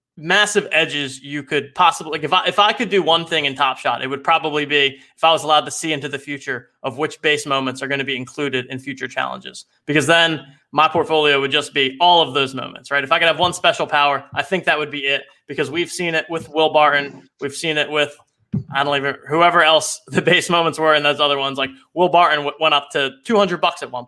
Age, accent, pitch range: 20-39, American, 140-165 Hz